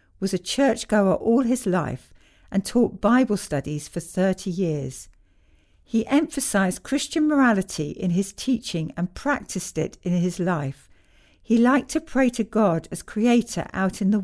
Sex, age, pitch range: female, 60-79, 155-230 Hz